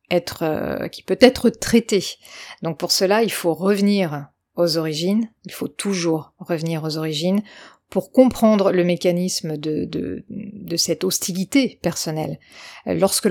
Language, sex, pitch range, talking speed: French, female, 175-220 Hz, 140 wpm